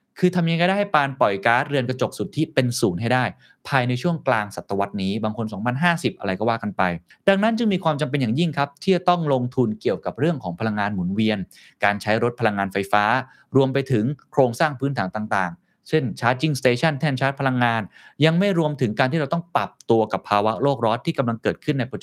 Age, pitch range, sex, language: 20-39, 110-155 Hz, male, Thai